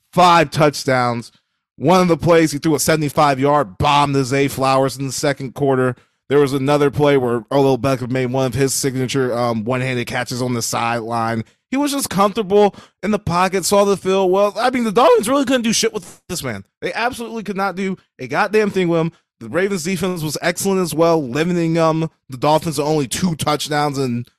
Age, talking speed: 20-39, 205 wpm